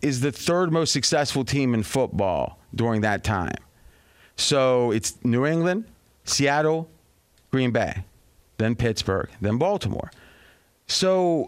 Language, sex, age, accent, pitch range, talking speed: English, male, 30-49, American, 130-205 Hz, 120 wpm